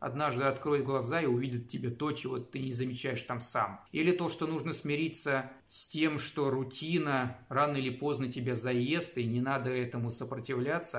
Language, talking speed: Russian, 175 wpm